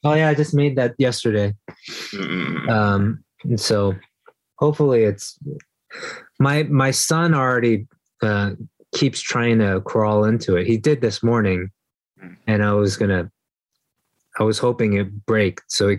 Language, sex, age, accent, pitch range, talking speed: English, male, 20-39, American, 100-130 Hz, 145 wpm